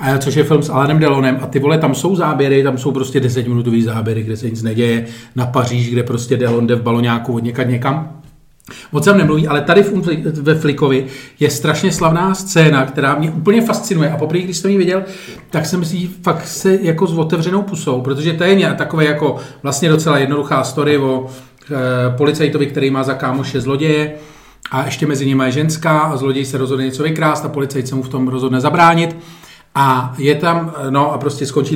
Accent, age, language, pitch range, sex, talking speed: native, 40-59, Czech, 130-160 Hz, male, 210 wpm